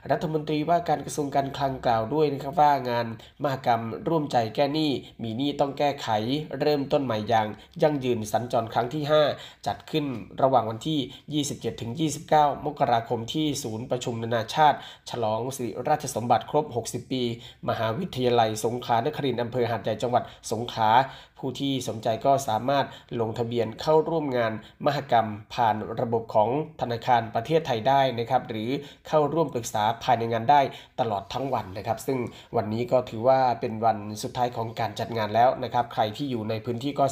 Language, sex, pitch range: Thai, male, 115-145 Hz